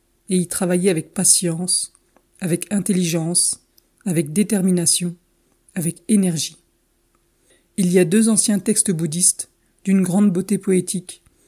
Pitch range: 170-195 Hz